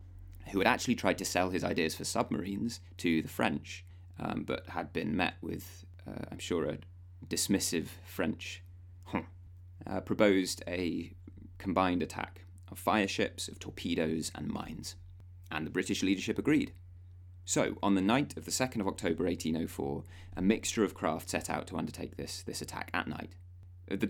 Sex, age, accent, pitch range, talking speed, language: male, 30-49, British, 90-100 Hz, 165 wpm, English